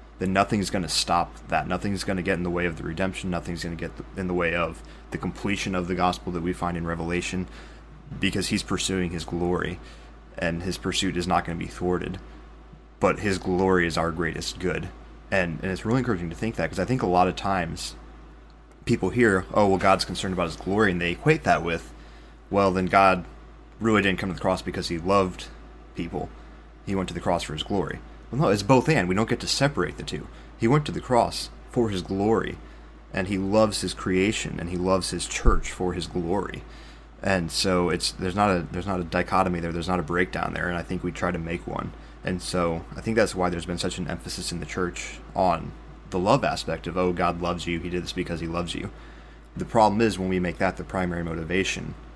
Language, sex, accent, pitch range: English, male, American, 85-95 Hz